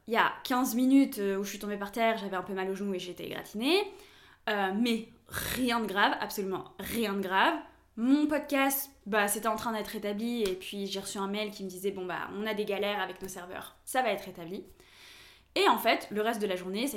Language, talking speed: French, 250 wpm